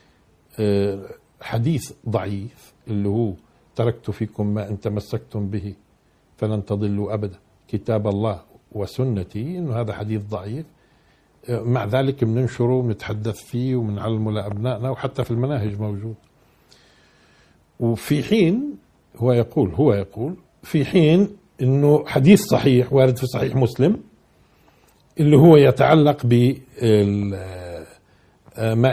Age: 50-69